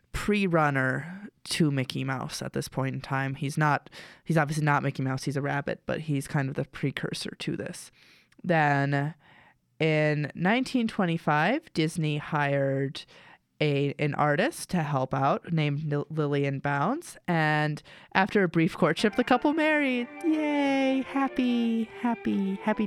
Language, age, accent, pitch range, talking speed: English, 20-39, American, 150-195 Hz, 140 wpm